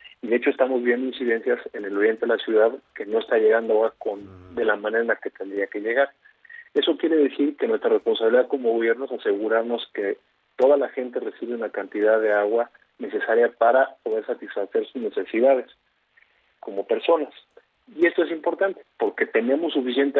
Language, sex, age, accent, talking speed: Spanish, male, 40-59, Mexican, 180 wpm